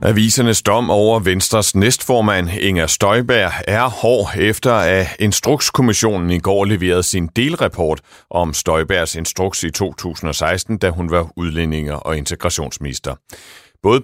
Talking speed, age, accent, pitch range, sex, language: 125 wpm, 60-79, native, 80-110 Hz, male, Danish